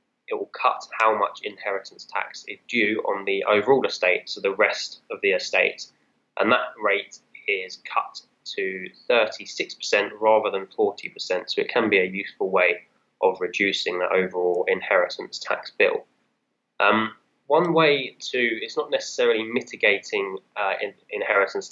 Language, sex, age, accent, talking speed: English, male, 10-29, British, 145 wpm